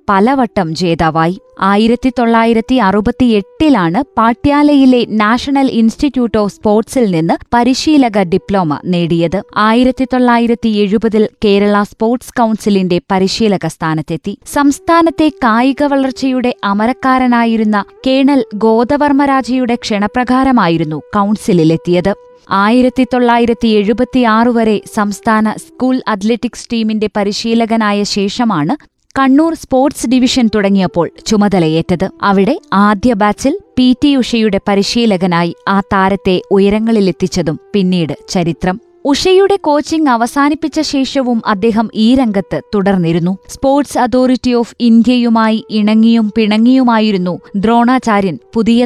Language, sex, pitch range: Malayalam, female, 200-255 Hz